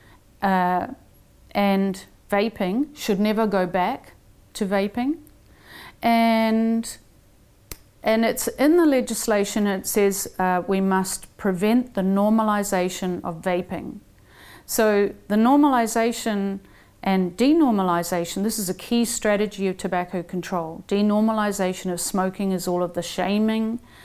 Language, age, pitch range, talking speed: English, 40-59, 185-225 Hz, 115 wpm